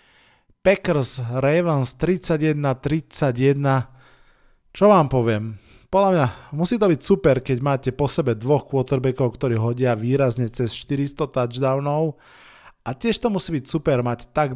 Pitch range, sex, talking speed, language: 120-145 Hz, male, 130 wpm, Slovak